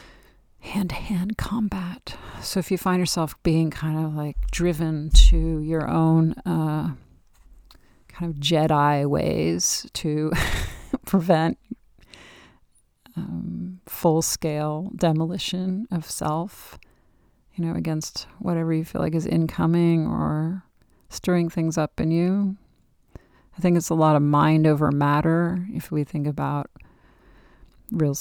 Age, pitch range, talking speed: 40-59, 150-175 Hz, 125 wpm